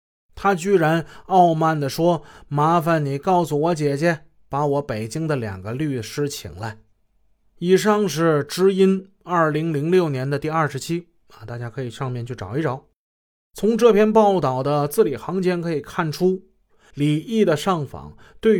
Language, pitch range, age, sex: Chinese, 120-175 Hz, 20-39, male